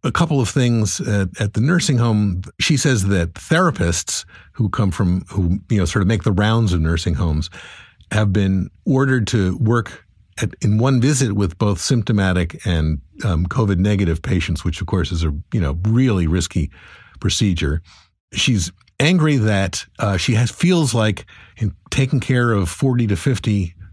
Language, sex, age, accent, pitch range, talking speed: English, male, 50-69, American, 90-120 Hz, 175 wpm